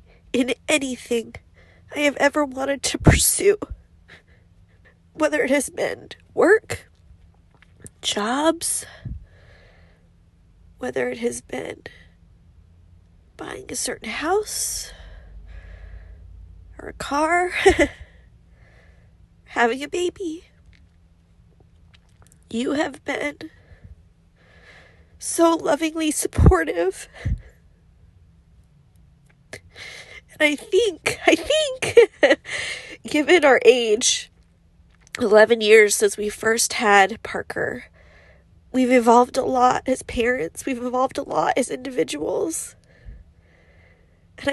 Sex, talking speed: female, 80 wpm